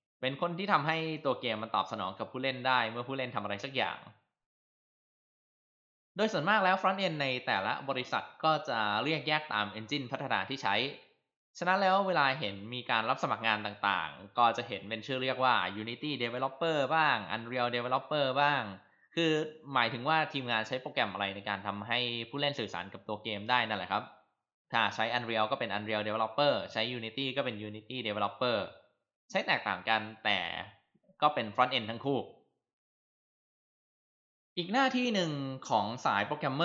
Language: Thai